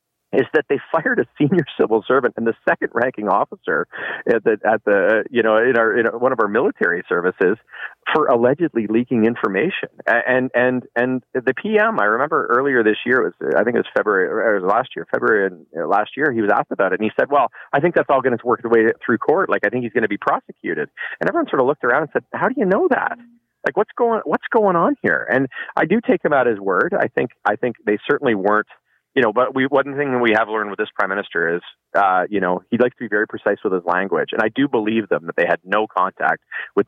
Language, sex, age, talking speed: English, male, 40-59, 260 wpm